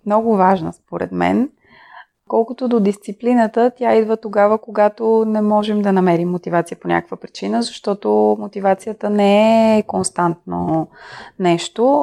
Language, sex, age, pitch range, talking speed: Bulgarian, female, 20-39, 180-225 Hz, 125 wpm